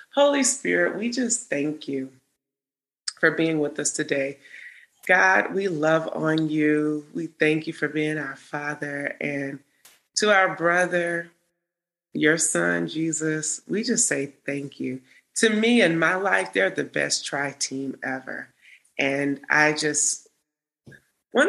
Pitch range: 140-170 Hz